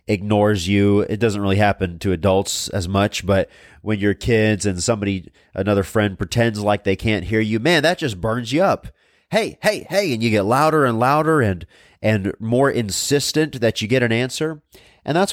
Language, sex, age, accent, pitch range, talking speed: English, male, 30-49, American, 100-135 Hz, 195 wpm